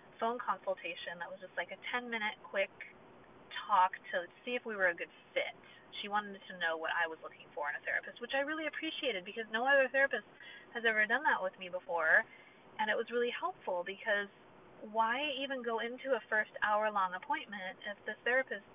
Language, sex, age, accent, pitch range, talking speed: English, female, 30-49, American, 175-235 Hz, 205 wpm